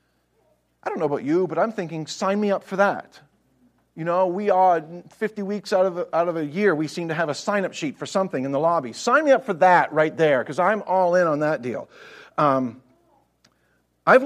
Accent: American